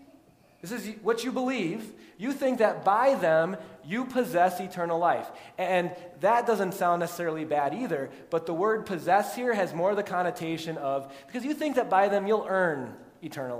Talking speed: 175 wpm